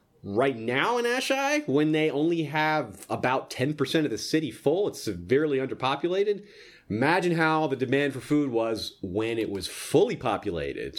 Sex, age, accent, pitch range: male, 30-49, American, 115-160 Hz